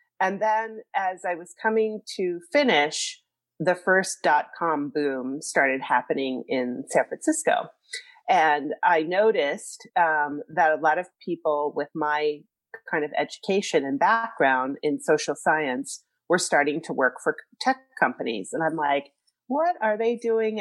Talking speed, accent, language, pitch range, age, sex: 145 wpm, American, English, 150-220 Hz, 40-59, female